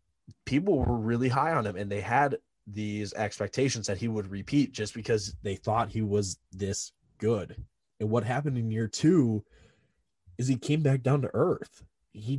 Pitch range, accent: 105-135 Hz, American